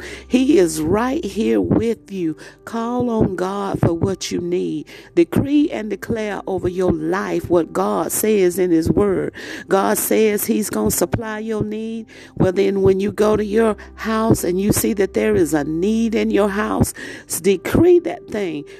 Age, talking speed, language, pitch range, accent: 50-69, 175 wpm, English, 175-220 Hz, American